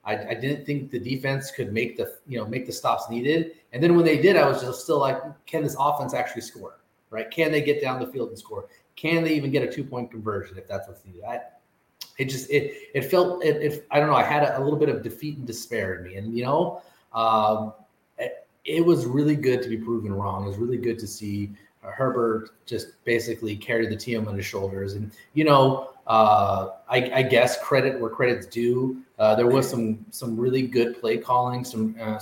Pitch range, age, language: 110-145 Hz, 30-49, English